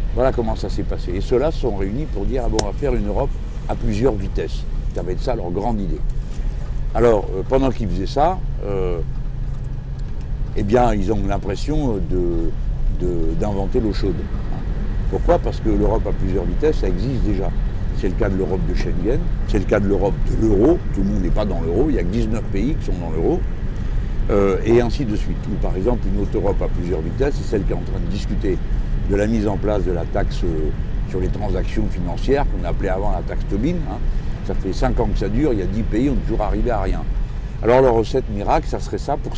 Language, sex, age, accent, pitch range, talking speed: French, male, 60-79, French, 95-120 Hz, 240 wpm